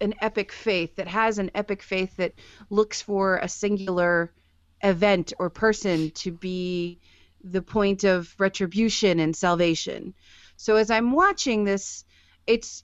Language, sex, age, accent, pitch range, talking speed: English, female, 30-49, American, 180-225 Hz, 140 wpm